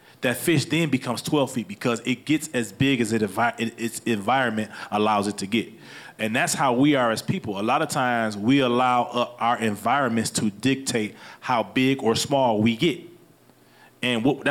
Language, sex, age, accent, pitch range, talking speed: English, male, 30-49, American, 110-140 Hz, 180 wpm